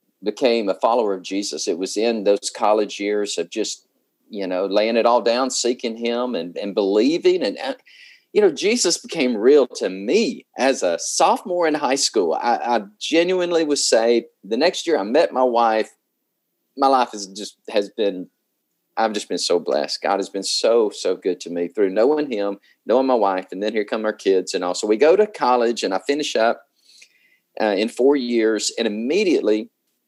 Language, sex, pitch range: English, male, 105-160 Hz